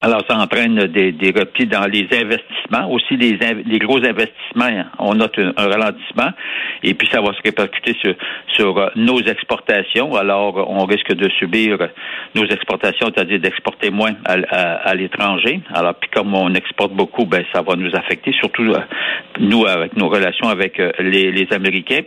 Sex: male